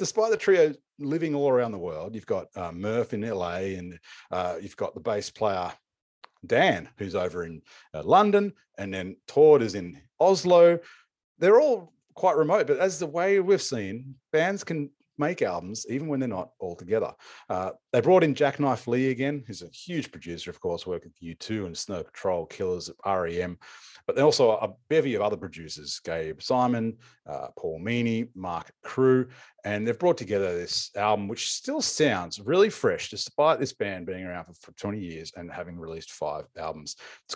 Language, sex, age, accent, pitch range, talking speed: English, male, 40-59, Australian, 90-145 Hz, 185 wpm